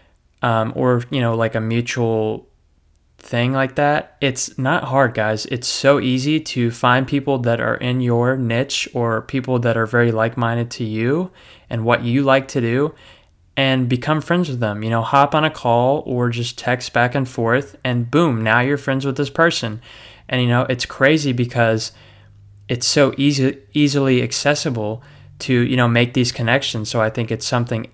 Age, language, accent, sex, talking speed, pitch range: 20-39, English, American, male, 185 wpm, 115-130 Hz